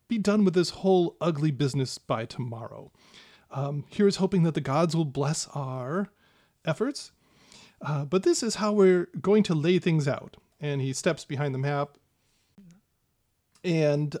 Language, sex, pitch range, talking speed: English, male, 140-180 Hz, 160 wpm